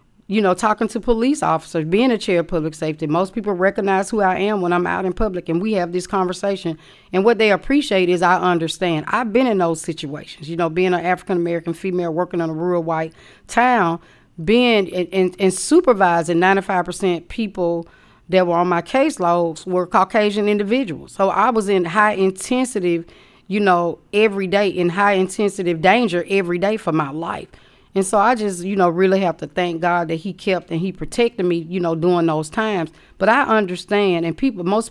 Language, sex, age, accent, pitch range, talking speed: English, female, 40-59, American, 170-200 Hz, 200 wpm